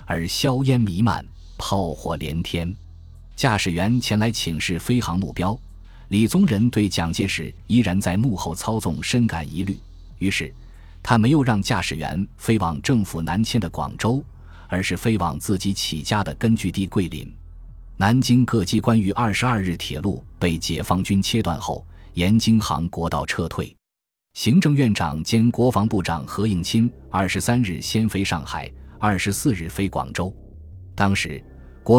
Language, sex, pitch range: Chinese, male, 85-115 Hz